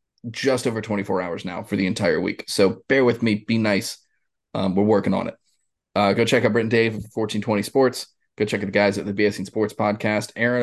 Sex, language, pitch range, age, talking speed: male, English, 100-115 Hz, 20-39, 245 wpm